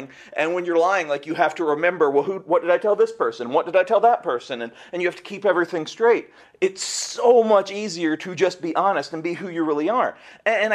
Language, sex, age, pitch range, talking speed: English, male, 40-59, 155-215 Hz, 260 wpm